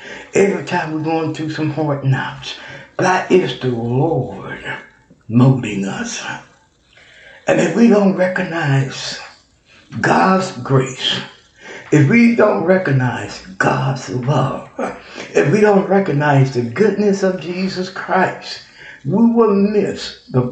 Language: English